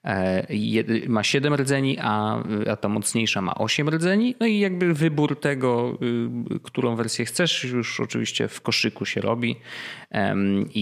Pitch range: 105-135 Hz